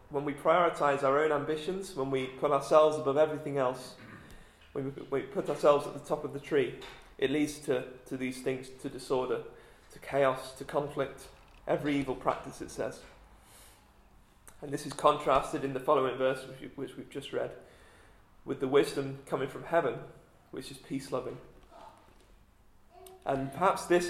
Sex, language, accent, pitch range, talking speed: male, English, British, 135-155 Hz, 160 wpm